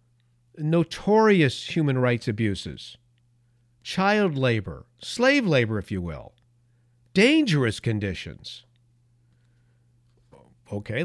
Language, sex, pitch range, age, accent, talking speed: English, male, 115-140 Hz, 50-69, American, 75 wpm